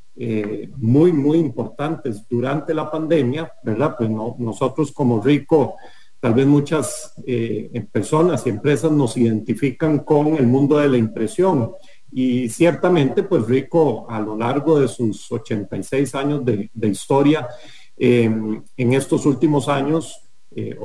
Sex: male